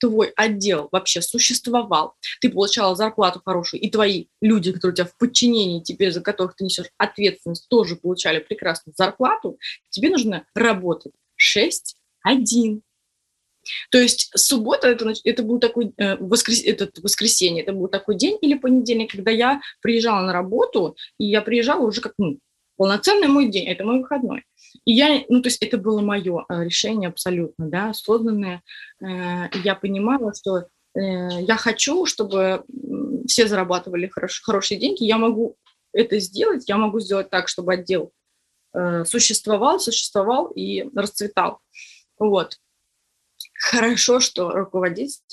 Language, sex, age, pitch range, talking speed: Russian, female, 20-39, 185-235 Hz, 145 wpm